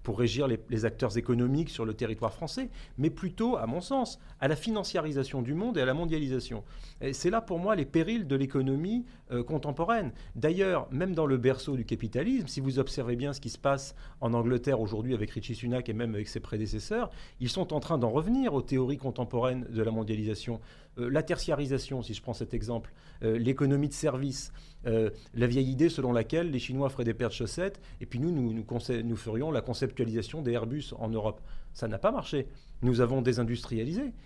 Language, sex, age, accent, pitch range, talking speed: French, male, 40-59, French, 115-155 Hz, 205 wpm